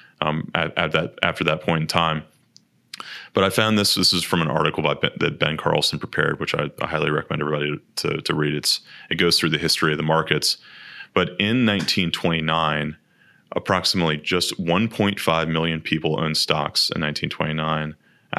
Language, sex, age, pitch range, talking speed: English, male, 30-49, 75-85 Hz, 175 wpm